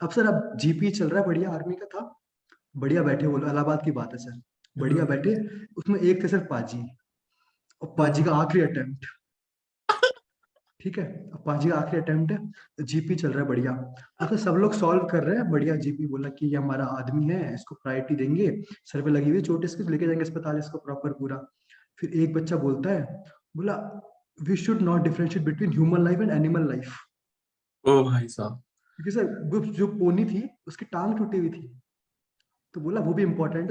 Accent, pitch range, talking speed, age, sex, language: native, 150-195 Hz, 145 wpm, 20-39, male, Hindi